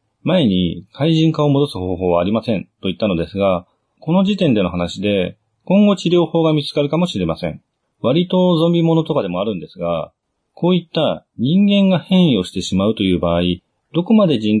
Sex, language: male, Japanese